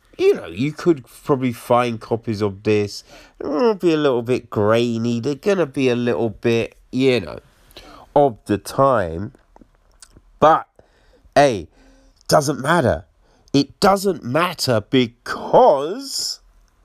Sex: male